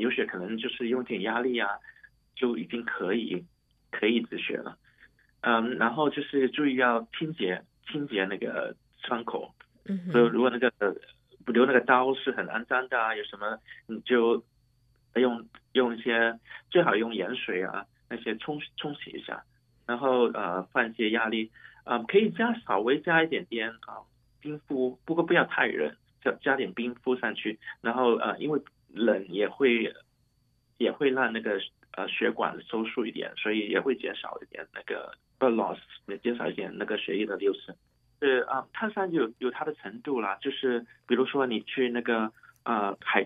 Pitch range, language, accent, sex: 115-135 Hz, Chinese, native, male